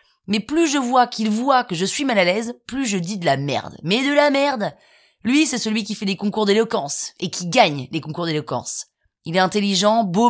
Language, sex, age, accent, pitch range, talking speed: French, female, 20-39, French, 180-235 Hz, 235 wpm